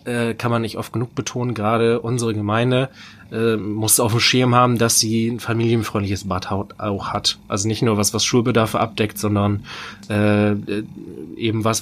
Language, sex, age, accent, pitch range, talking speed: German, male, 20-39, German, 110-125 Hz, 170 wpm